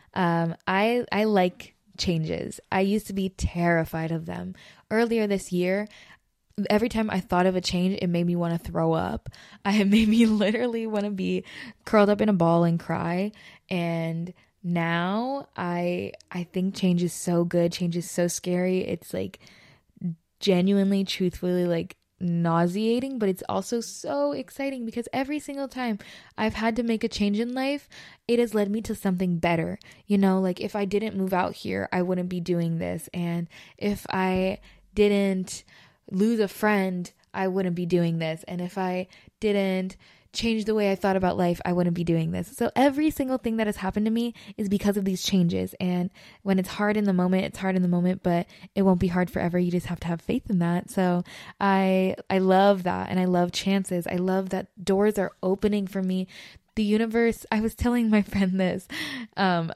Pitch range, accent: 175-210 Hz, American